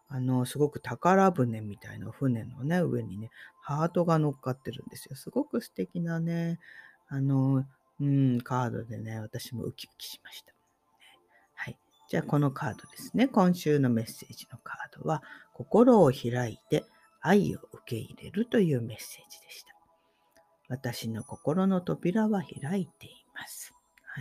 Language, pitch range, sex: Japanese, 120-170 Hz, female